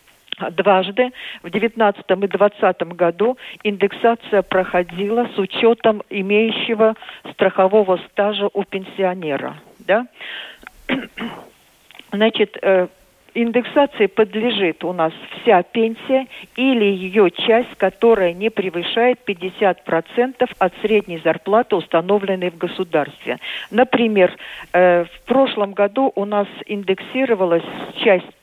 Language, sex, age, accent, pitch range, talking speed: Russian, female, 50-69, native, 185-230 Hz, 95 wpm